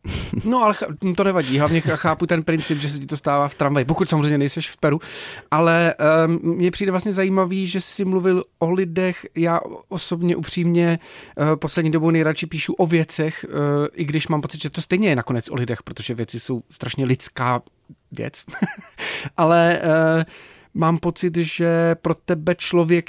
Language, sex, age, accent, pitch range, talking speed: Czech, male, 30-49, native, 150-185 Hz, 165 wpm